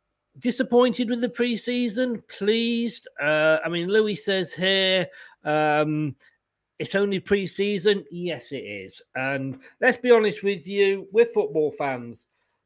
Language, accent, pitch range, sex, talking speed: English, British, 155-215 Hz, male, 130 wpm